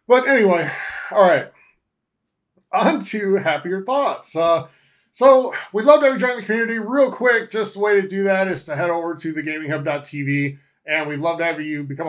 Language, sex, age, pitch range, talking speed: English, male, 30-49, 150-200 Hz, 195 wpm